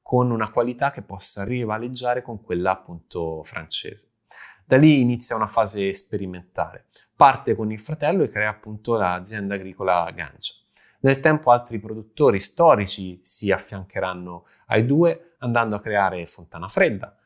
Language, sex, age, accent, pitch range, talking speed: Italian, male, 20-39, native, 95-120 Hz, 140 wpm